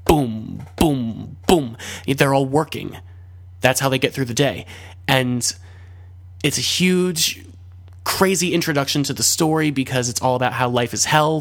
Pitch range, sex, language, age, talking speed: 100-140 Hz, male, English, 20-39, 160 wpm